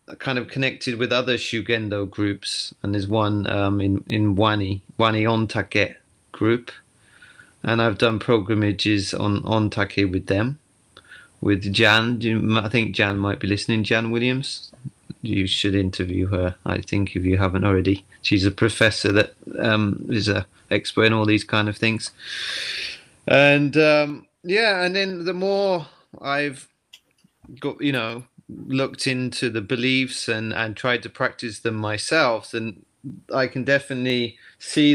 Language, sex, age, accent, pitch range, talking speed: English, male, 30-49, British, 105-125 Hz, 150 wpm